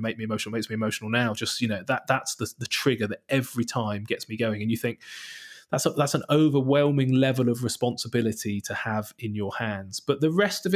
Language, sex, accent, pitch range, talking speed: English, male, British, 110-135 Hz, 230 wpm